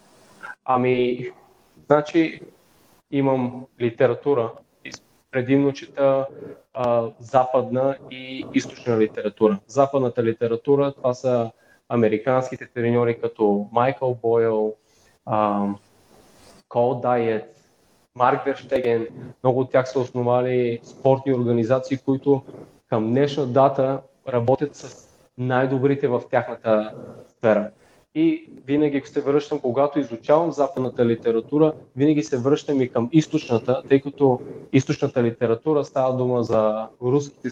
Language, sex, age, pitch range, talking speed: Bulgarian, male, 20-39, 120-140 Hz, 100 wpm